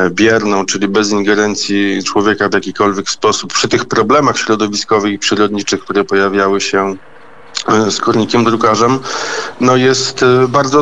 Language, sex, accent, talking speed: Polish, male, native, 130 wpm